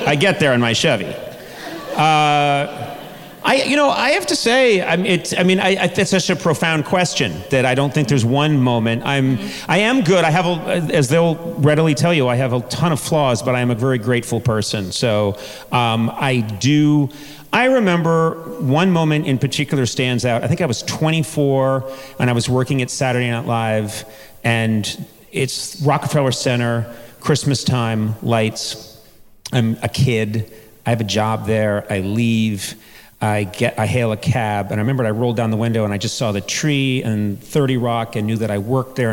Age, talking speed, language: 40-59, 195 wpm, English